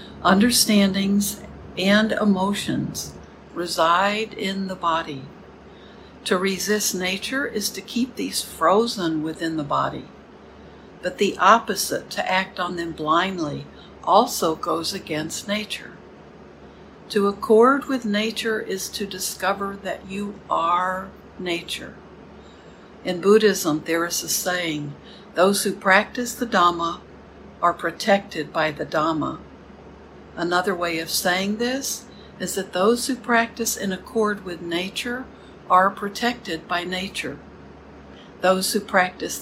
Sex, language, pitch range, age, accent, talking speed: female, English, 170-205 Hz, 60-79, American, 120 wpm